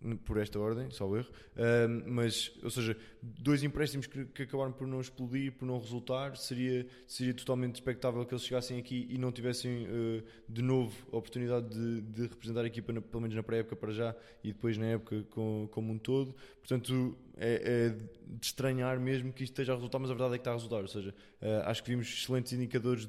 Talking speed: 220 wpm